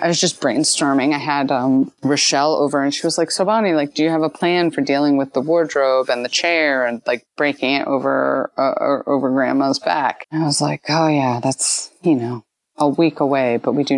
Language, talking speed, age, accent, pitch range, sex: English, 230 wpm, 30-49, American, 130-155 Hz, female